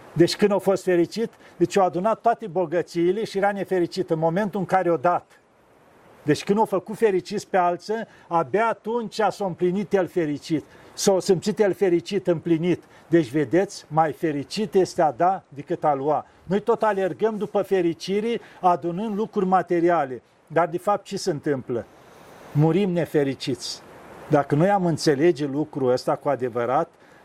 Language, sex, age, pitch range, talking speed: Romanian, male, 50-69, 170-220 Hz, 155 wpm